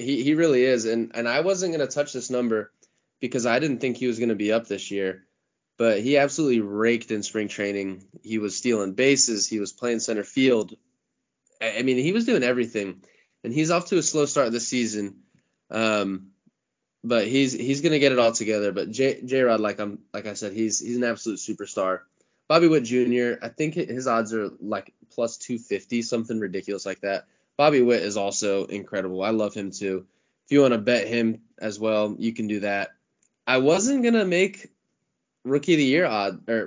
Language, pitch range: English, 105-130 Hz